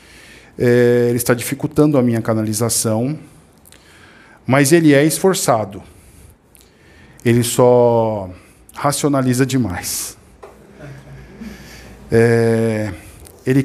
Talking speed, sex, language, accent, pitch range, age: 75 wpm, male, Portuguese, Brazilian, 105-170 Hz, 50-69